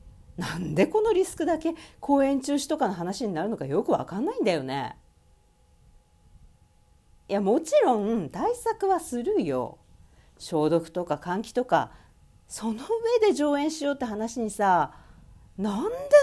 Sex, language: female, Japanese